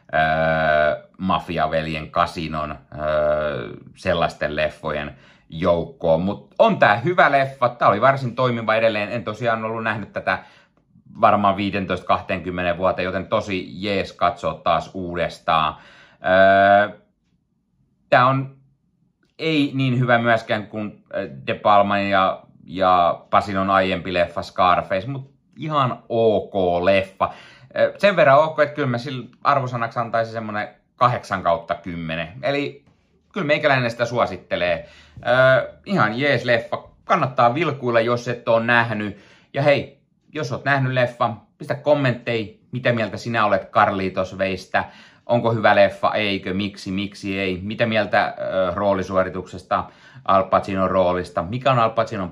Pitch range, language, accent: 90-120 Hz, Finnish, native